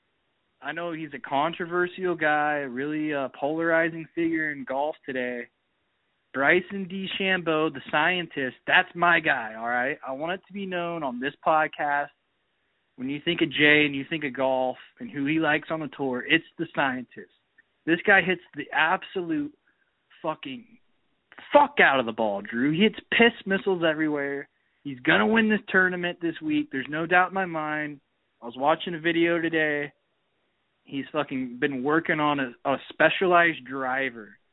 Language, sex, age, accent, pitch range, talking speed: English, male, 20-39, American, 140-175 Hz, 170 wpm